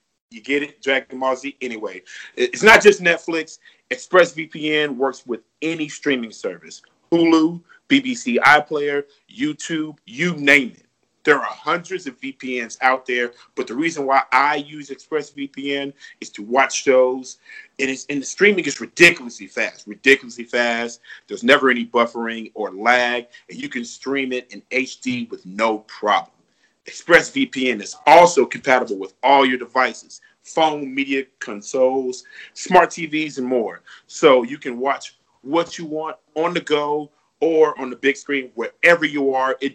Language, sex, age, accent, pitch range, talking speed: English, male, 40-59, American, 130-170 Hz, 150 wpm